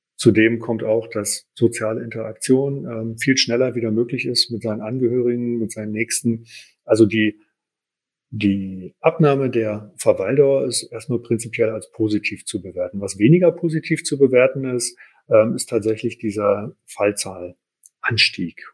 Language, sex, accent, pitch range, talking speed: German, male, German, 110-145 Hz, 130 wpm